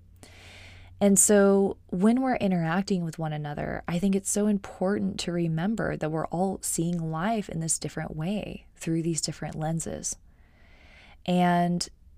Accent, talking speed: American, 145 wpm